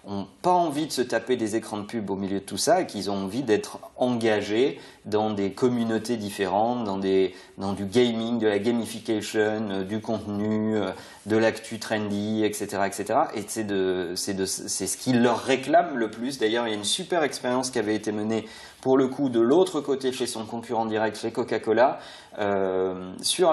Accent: French